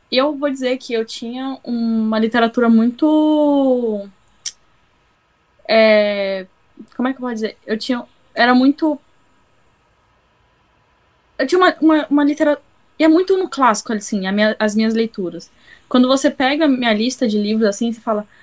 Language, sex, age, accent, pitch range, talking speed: Portuguese, female, 10-29, Brazilian, 210-260 Hz, 155 wpm